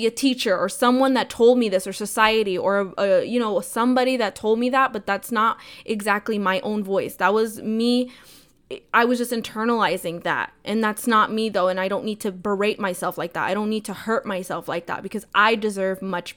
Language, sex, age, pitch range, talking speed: English, female, 20-39, 190-220 Hz, 215 wpm